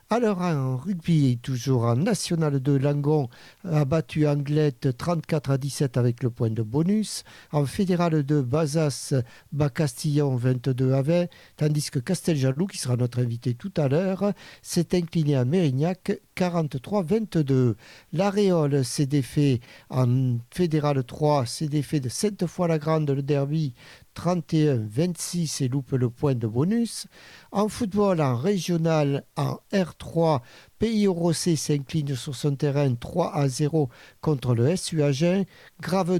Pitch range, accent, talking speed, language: 135-175 Hz, French, 145 wpm, French